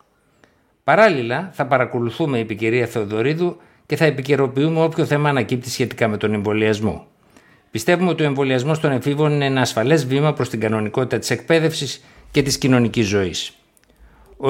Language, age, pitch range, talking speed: Greek, 60-79, 115-155 Hz, 150 wpm